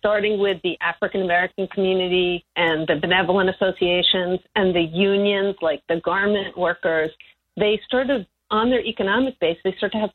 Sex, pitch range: female, 180-210 Hz